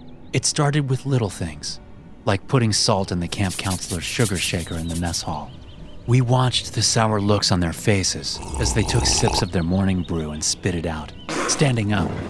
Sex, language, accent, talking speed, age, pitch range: male, English, American, 195 wpm, 30-49, 85-115 Hz